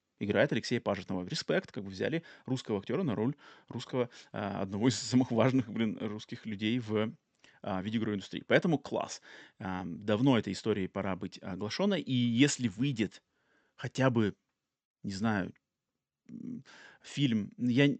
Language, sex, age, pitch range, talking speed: Russian, male, 30-49, 105-135 Hz, 135 wpm